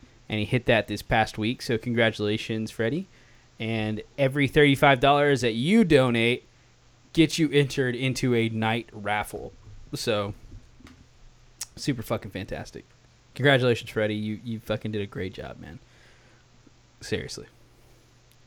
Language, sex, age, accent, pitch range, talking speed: English, male, 20-39, American, 115-140 Hz, 125 wpm